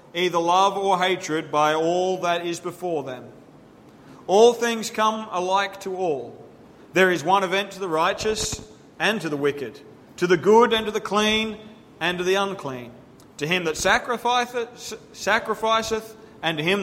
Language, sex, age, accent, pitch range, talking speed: English, male, 40-59, Australian, 155-195 Hz, 165 wpm